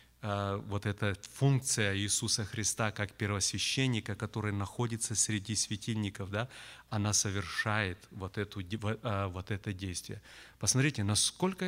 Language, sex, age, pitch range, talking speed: Russian, male, 30-49, 100-120 Hz, 100 wpm